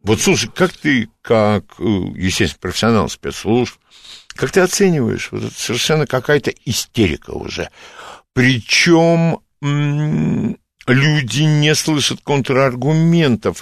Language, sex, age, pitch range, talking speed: Russian, male, 60-79, 110-160 Hz, 100 wpm